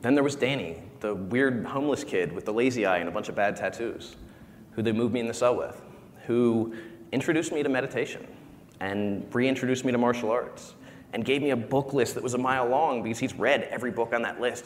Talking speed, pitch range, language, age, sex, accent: 230 wpm, 115-140 Hz, English, 30-49, male, American